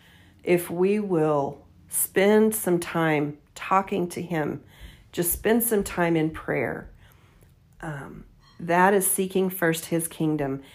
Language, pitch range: English, 165-200 Hz